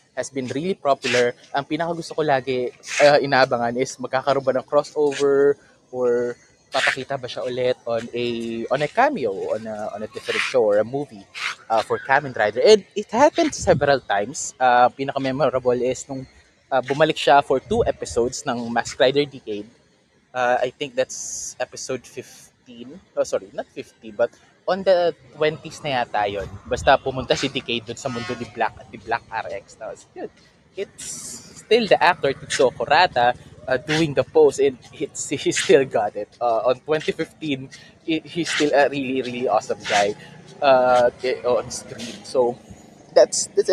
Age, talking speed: 20-39, 160 wpm